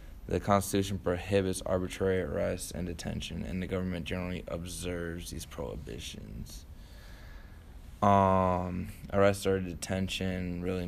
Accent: American